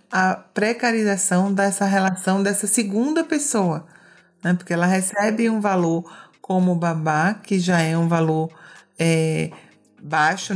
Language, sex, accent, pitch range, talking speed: Portuguese, female, Brazilian, 165-200 Hz, 130 wpm